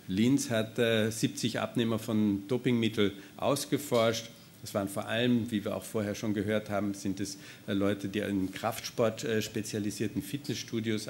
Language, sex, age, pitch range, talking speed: German, male, 50-69, 100-115 Hz, 155 wpm